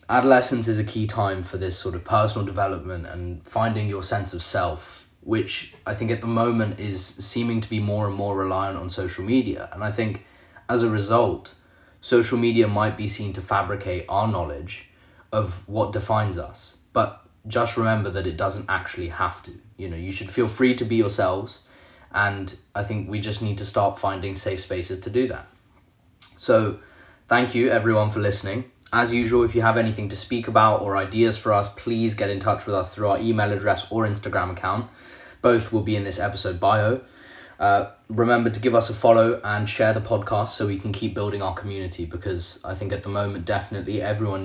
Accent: British